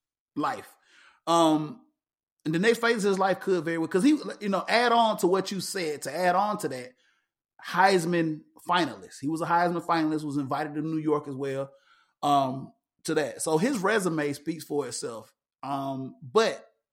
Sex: male